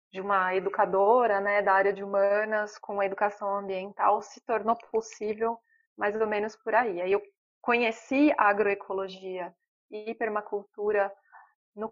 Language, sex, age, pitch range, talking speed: Portuguese, female, 20-39, 195-240 Hz, 140 wpm